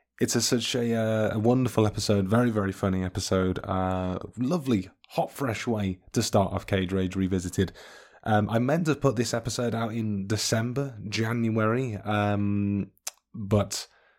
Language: English